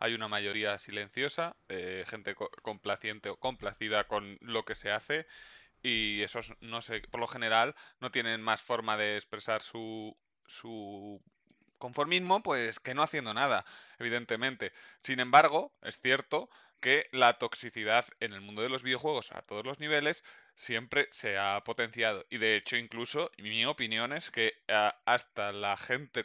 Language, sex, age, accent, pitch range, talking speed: Spanish, male, 20-39, Spanish, 110-135 Hz, 155 wpm